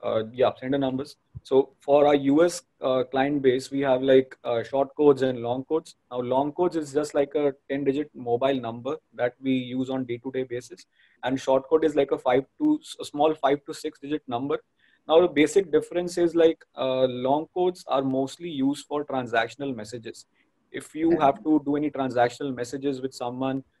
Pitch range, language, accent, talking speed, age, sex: 130-155 Hz, English, Indian, 200 wpm, 20-39, male